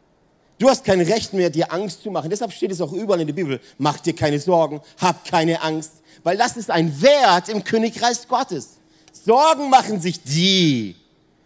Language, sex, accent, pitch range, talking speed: German, male, German, 170-240 Hz, 190 wpm